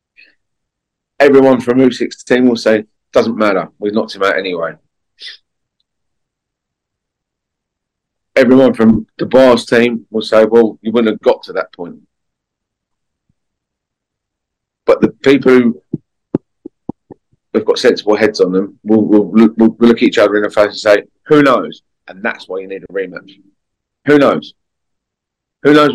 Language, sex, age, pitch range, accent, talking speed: English, male, 30-49, 110-130 Hz, British, 145 wpm